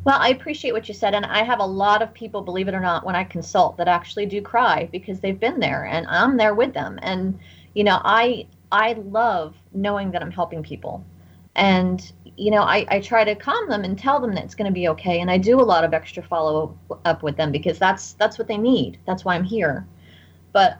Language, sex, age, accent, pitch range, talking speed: English, female, 30-49, American, 175-225 Hz, 240 wpm